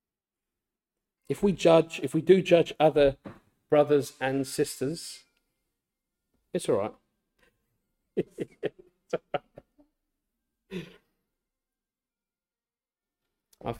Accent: British